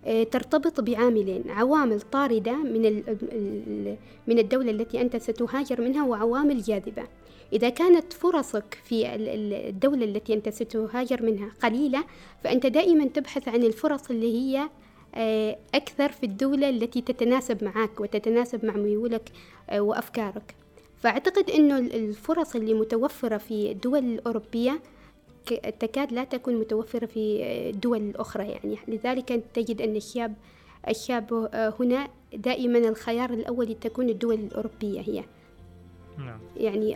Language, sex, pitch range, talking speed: Arabic, female, 220-255 Hz, 115 wpm